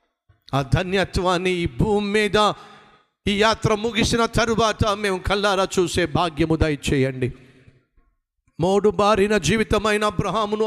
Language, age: Telugu, 50-69